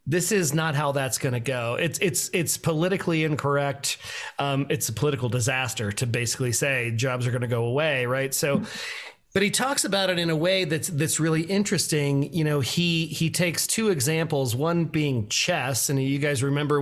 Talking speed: 195 wpm